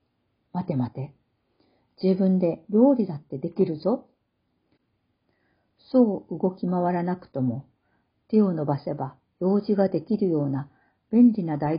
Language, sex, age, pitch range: Japanese, female, 50-69, 150-210 Hz